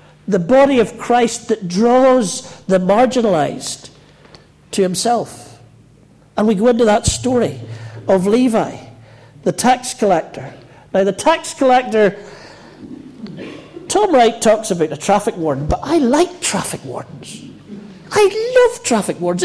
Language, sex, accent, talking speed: English, male, British, 125 wpm